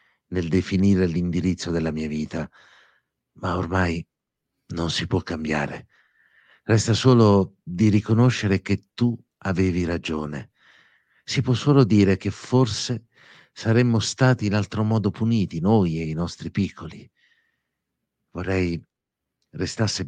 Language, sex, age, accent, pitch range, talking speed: Italian, male, 50-69, native, 85-105 Hz, 115 wpm